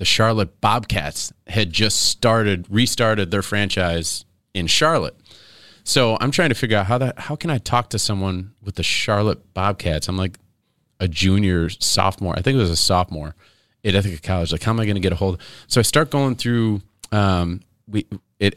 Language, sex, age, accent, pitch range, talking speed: English, male, 30-49, American, 90-110 Hz, 195 wpm